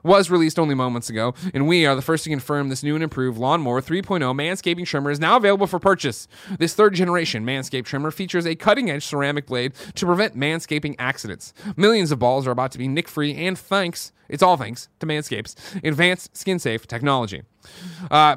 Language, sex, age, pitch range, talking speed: English, male, 30-49, 125-175 Hz, 200 wpm